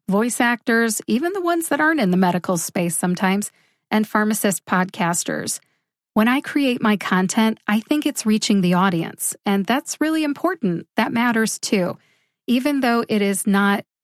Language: English